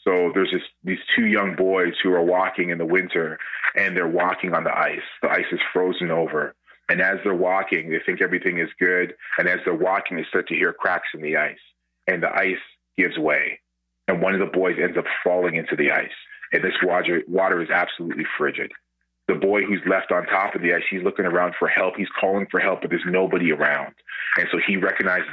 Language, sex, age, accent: English, male, 30-49, American